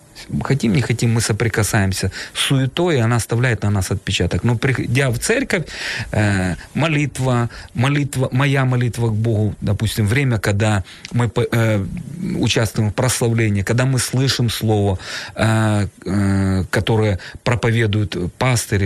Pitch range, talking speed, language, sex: 100-125 Hz, 120 wpm, Ukrainian, male